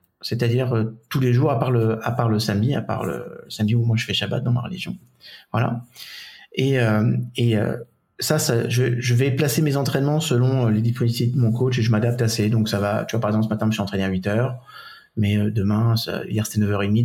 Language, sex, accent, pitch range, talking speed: French, male, French, 115-130 Hz, 235 wpm